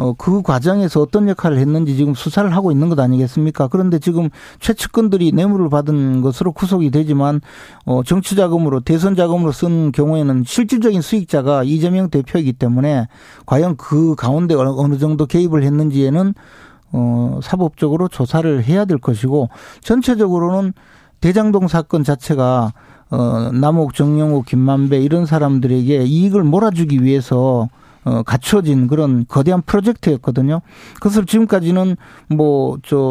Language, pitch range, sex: Korean, 135-175 Hz, male